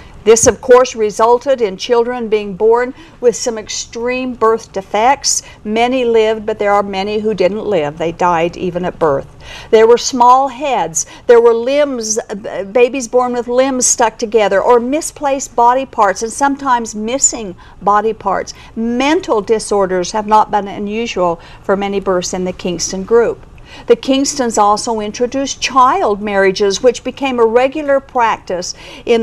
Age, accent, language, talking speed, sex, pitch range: 50-69, American, English, 150 wpm, female, 205-265 Hz